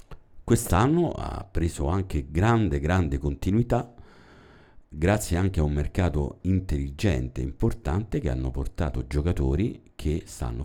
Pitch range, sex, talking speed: 70-95 Hz, male, 120 wpm